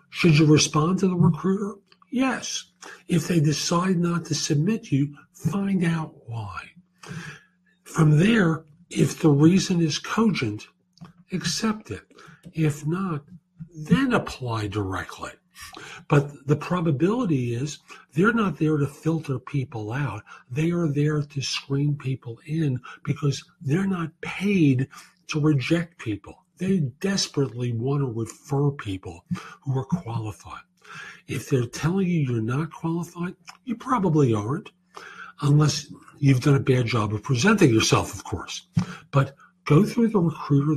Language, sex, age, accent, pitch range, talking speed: English, male, 50-69, American, 135-175 Hz, 135 wpm